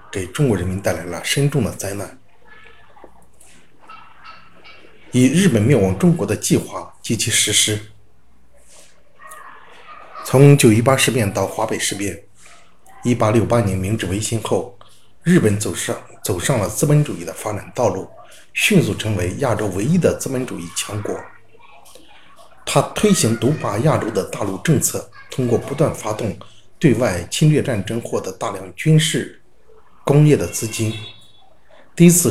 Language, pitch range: Chinese, 105-150 Hz